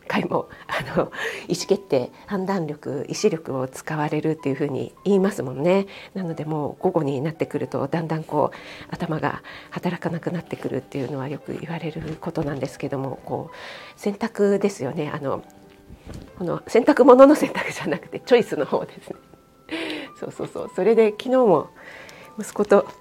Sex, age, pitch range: female, 40-59, 155-225 Hz